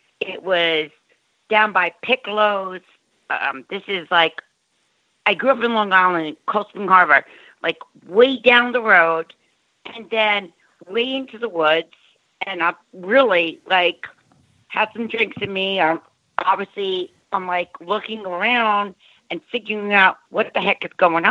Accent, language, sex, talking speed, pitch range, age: American, English, female, 145 wpm, 185-230 Hz, 50-69